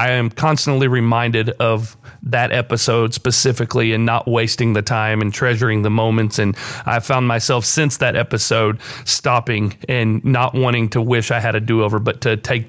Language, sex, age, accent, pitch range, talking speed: English, male, 40-59, American, 120-145 Hz, 175 wpm